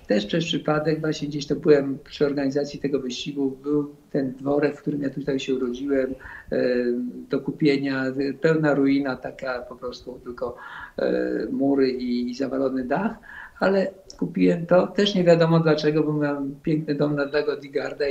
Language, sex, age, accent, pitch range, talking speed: Polish, male, 50-69, native, 135-160 Hz, 150 wpm